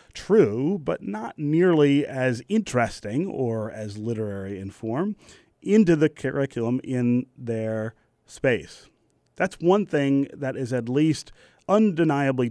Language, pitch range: English, 115-145 Hz